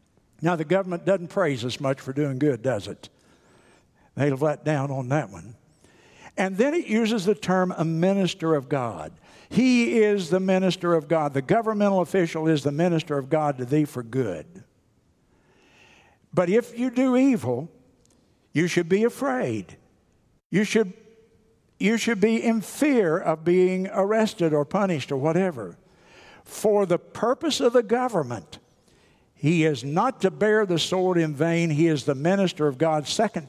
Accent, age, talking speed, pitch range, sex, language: American, 60-79, 165 wpm, 150-215 Hz, male, English